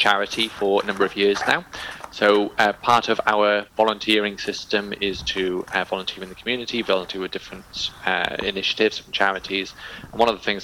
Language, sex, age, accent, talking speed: English, male, 20-39, British, 185 wpm